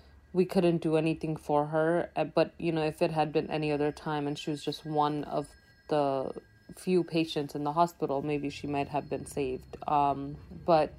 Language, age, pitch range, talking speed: English, 30-49, 135-155 Hz, 195 wpm